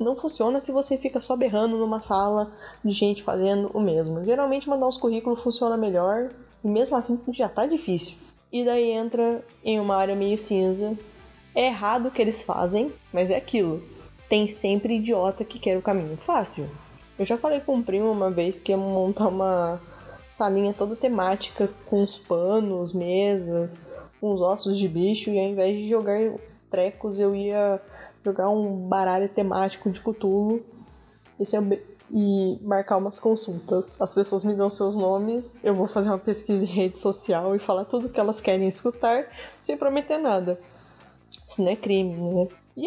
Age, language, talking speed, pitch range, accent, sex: 10-29, Portuguese, 175 wpm, 195-235 Hz, Brazilian, female